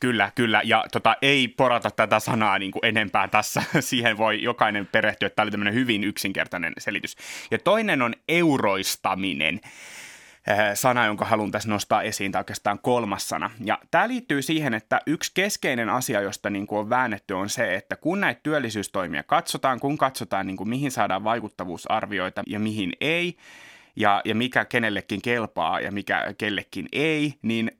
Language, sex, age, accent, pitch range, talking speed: Finnish, male, 30-49, native, 105-135 Hz, 165 wpm